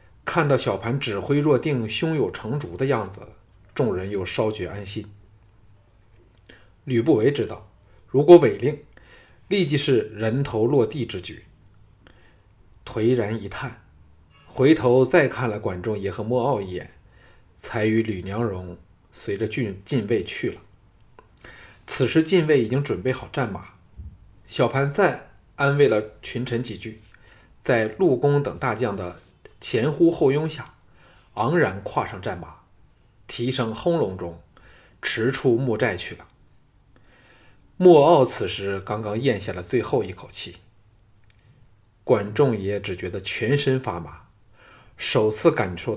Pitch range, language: 100-130 Hz, Chinese